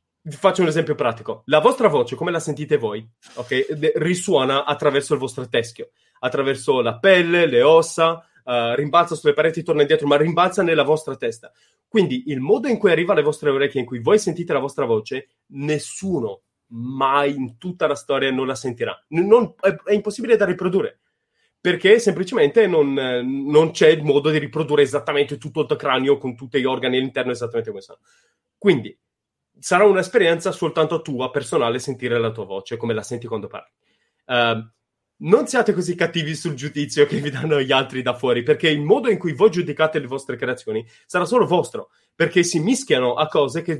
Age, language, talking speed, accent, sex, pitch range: 30-49, Italian, 185 wpm, native, male, 135-195 Hz